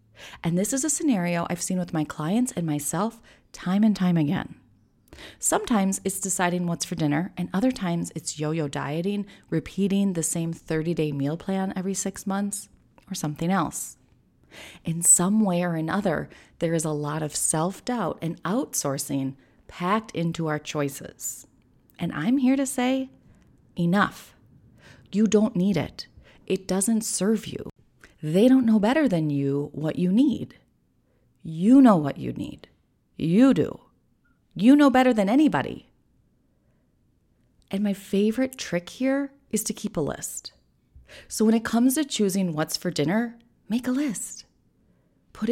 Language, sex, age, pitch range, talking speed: English, female, 30-49, 165-250 Hz, 150 wpm